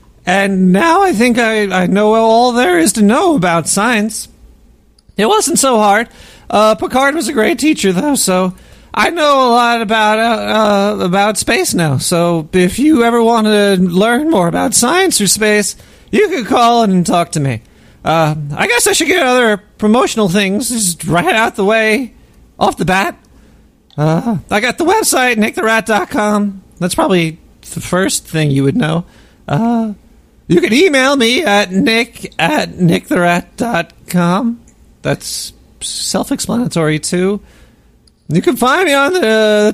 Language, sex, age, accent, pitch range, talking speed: English, male, 40-59, American, 180-245 Hz, 165 wpm